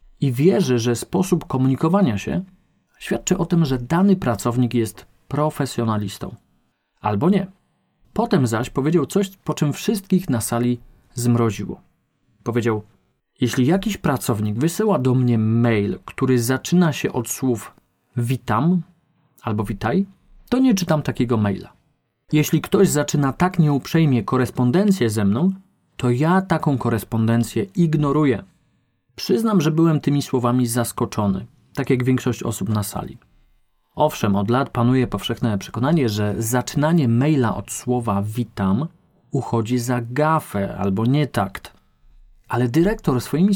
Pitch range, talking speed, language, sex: 115-155 Hz, 130 wpm, Polish, male